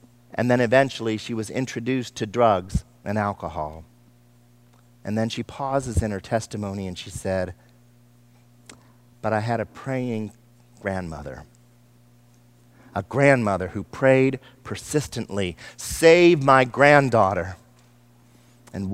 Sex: male